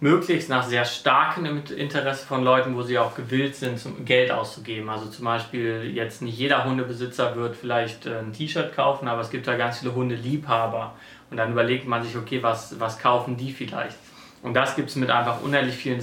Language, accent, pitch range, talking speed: German, German, 120-140 Hz, 195 wpm